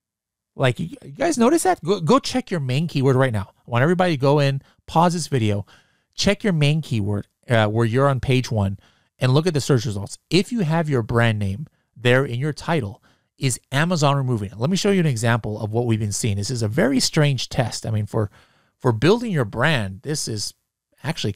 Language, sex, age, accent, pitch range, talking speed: English, male, 30-49, American, 115-155 Hz, 220 wpm